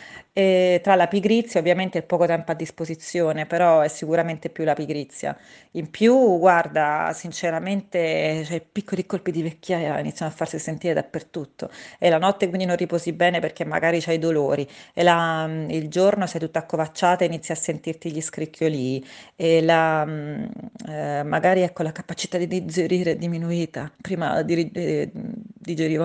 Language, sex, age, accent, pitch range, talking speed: Italian, female, 30-49, native, 155-180 Hz, 160 wpm